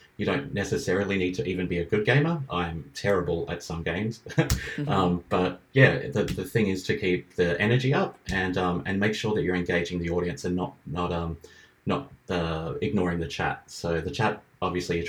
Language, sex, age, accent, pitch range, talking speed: English, male, 30-49, Australian, 85-100 Hz, 205 wpm